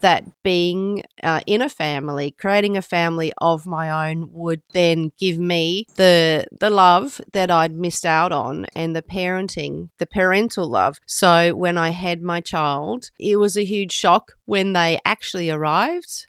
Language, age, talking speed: English, 40-59, 165 wpm